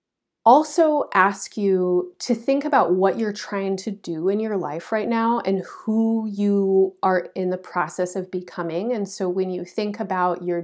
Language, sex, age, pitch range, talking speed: English, female, 30-49, 180-225 Hz, 180 wpm